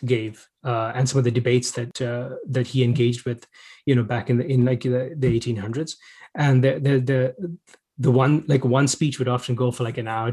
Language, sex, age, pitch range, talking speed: English, male, 20-39, 120-140 Hz, 225 wpm